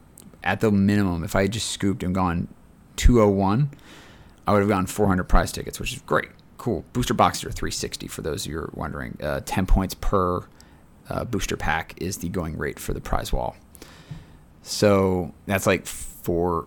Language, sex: English, male